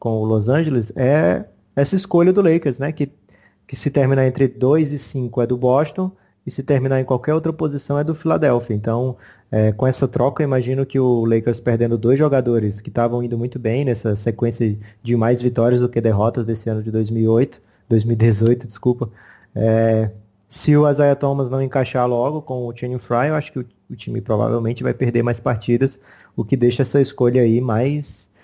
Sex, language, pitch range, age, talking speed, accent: male, Portuguese, 110-135 Hz, 20-39, 195 wpm, Brazilian